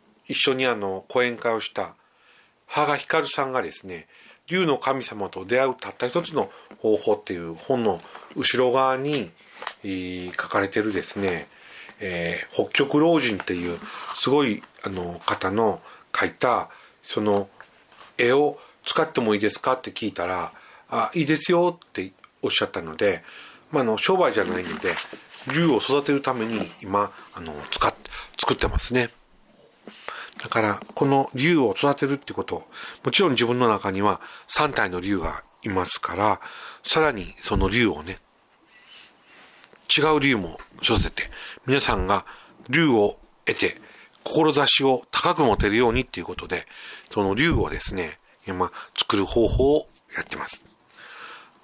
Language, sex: Japanese, male